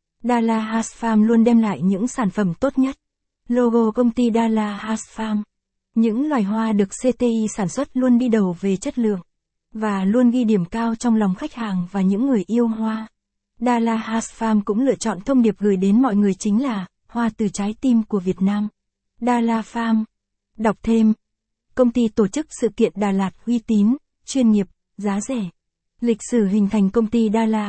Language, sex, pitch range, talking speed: Vietnamese, female, 205-235 Hz, 195 wpm